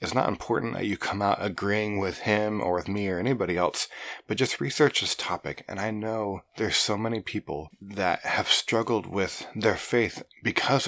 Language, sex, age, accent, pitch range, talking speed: English, male, 20-39, American, 95-115 Hz, 195 wpm